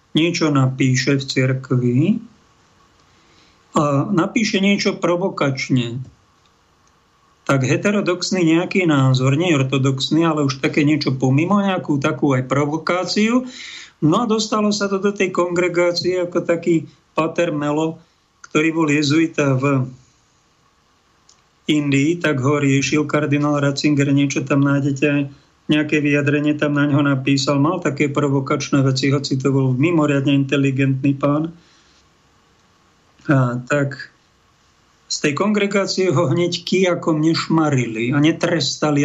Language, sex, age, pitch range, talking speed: Slovak, male, 50-69, 140-170 Hz, 115 wpm